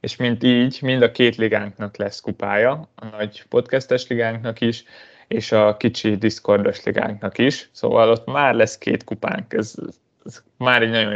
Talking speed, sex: 165 wpm, male